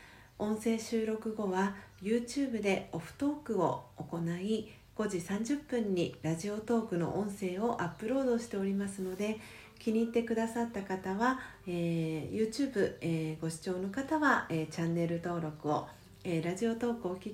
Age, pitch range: 40-59, 175-235 Hz